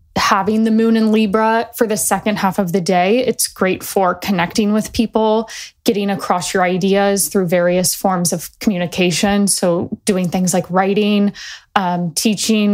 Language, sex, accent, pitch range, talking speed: English, female, American, 185-220 Hz, 160 wpm